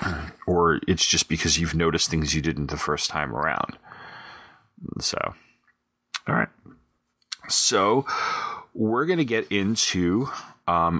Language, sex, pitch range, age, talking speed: English, male, 85-110 Hz, 30-49, 115 wpm